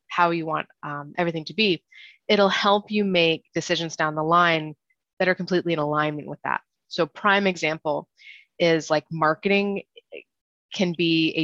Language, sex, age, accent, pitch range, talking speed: English, female, 20-39, American, 155-185 Hz, 165 wpm